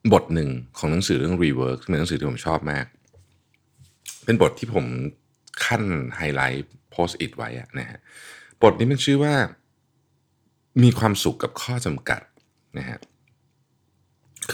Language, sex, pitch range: Thai, male, 75-105 Hz